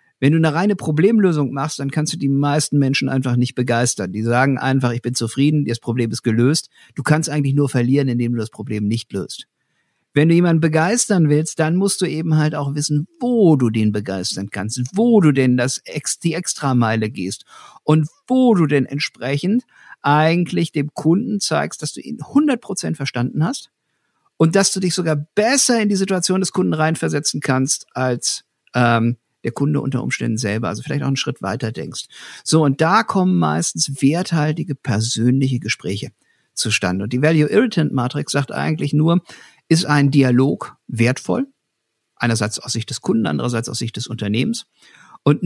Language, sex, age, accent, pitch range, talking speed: German, male, 50-69, German, 125-165 Hz, 175 wpm